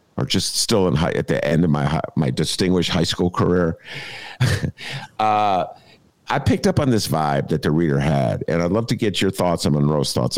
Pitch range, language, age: 100-135 Hz, English, 50-69